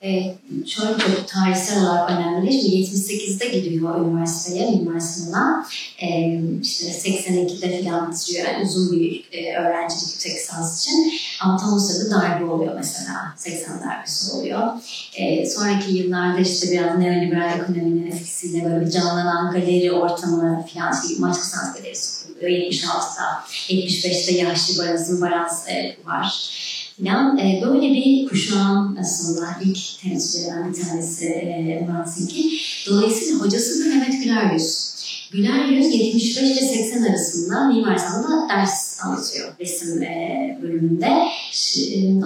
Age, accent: 30-49, native